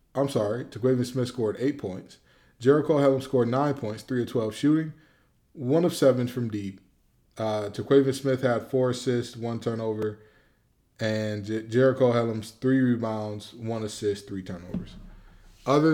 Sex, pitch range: male, 110-135 Hz